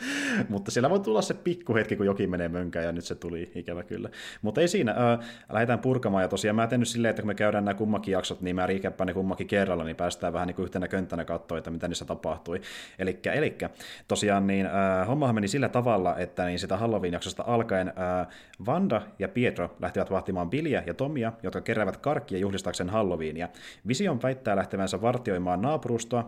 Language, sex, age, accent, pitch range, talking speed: Finnish, male, 30-49, native, 90-120 Hz, 185 wpm